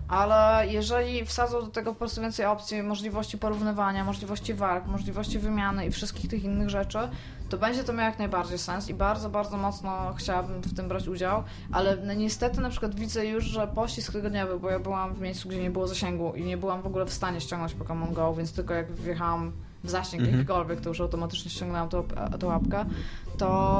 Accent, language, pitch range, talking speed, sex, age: native, Polish, 170-220 Hz, 200 wpm, female, 20-39